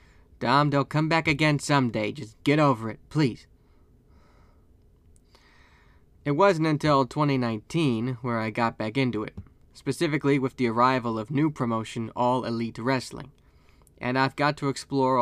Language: English